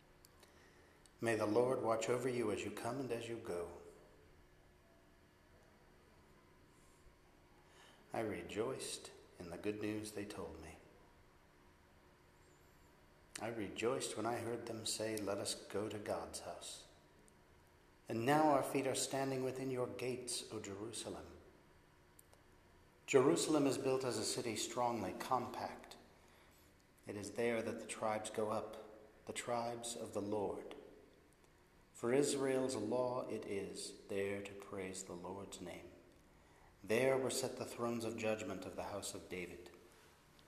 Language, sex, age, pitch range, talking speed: English, male, 50-69, 75-115 Hz, 135 wpm